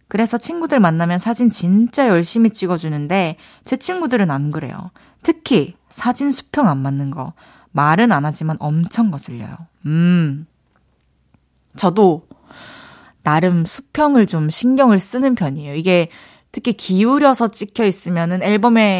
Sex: female